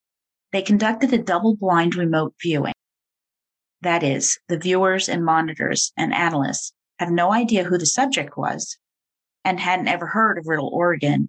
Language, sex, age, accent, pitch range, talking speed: English, female, 40-59, American, 155-205 Hz, 150 wpm